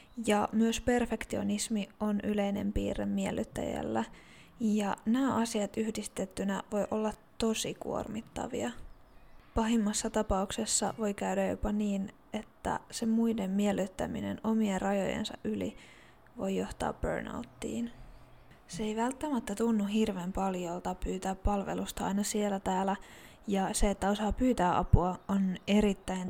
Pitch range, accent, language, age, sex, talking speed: 195-220 Hz, native, Finnish, 20-39, female, 115 wpm